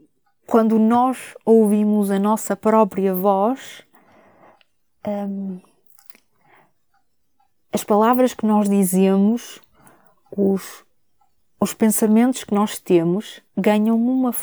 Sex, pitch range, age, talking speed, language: female, 185-210 Hz, 20-39, 85 wpm, Portuguese